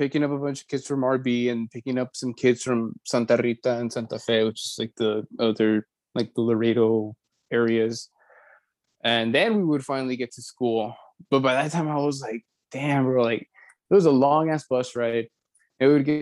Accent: American